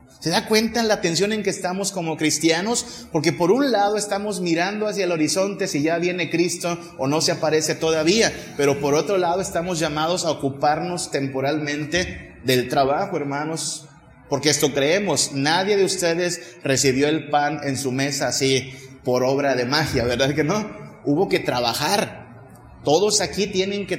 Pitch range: 140-175 Hz